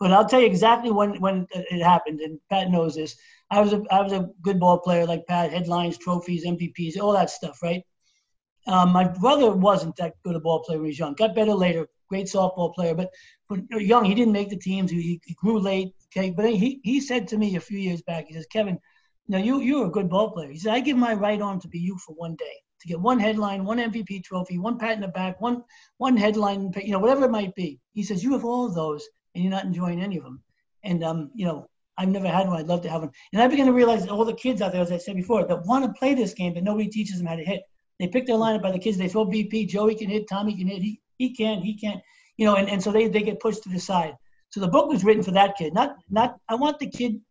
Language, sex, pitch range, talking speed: English, male, 175-220 Hz, 280 wpm